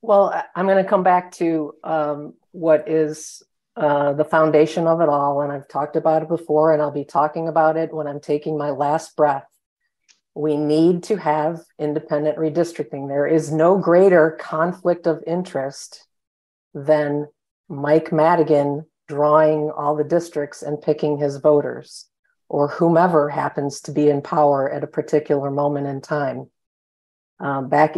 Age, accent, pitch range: 50-69, American, 145-165 Hz